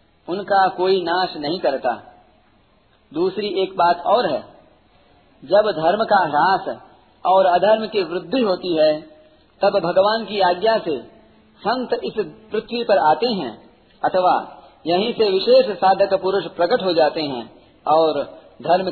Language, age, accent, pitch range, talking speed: Hindi, 40-59, native, 170-215 Hz, 135 wpm